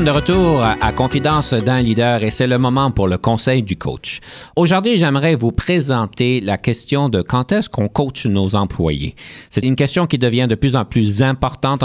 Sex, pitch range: male, 105-140 Hz